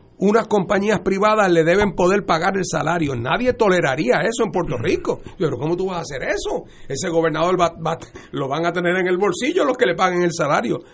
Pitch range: 130-180 Hz